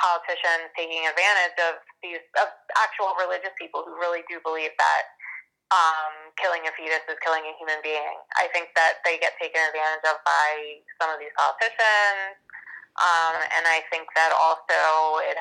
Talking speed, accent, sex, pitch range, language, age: 170 wpm, American, female, 155-185 Hz, English, 20-39